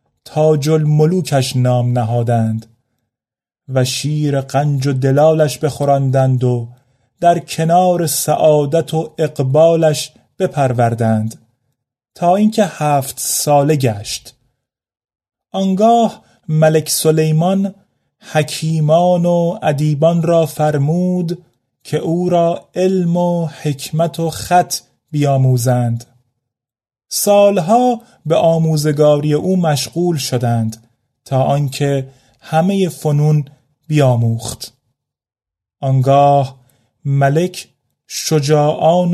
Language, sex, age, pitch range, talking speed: Persian, male, 30-49, 130-165 Hz, 85 wpm